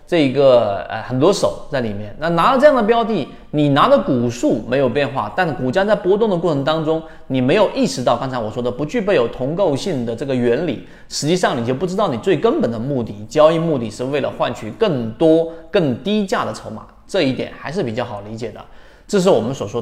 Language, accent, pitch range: Chinese, native, 120-185 Hz